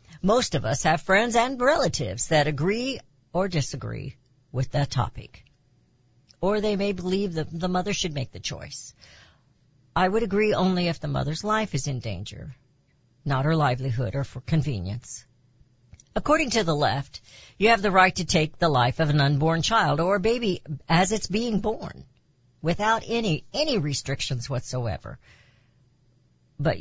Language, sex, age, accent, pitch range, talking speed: English, female, 60-79, American, 130-195 Hz, 155 wpm